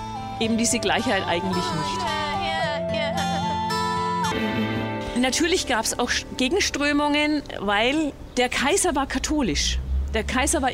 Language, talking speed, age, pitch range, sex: German, 100 wpm, 40-59, 210-270 Hz, female